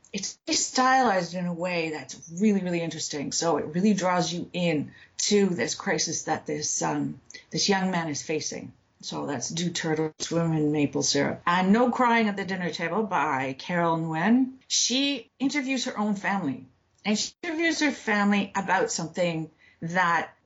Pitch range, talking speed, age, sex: 160-220 Hz, 165 wpm, 50-69, female